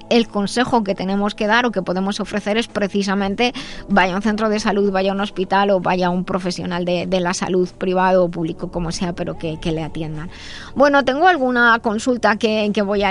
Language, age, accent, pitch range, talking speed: Spanish, 20-39, Spanish, 195-245 Hz, 225 wpm